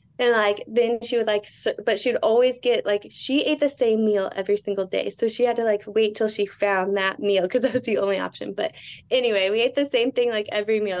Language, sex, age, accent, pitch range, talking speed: English, female, 20-39, American, 215-270 Hz, 255 wpm